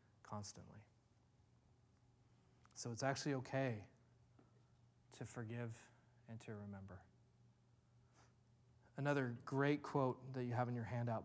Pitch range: 115-155 Hz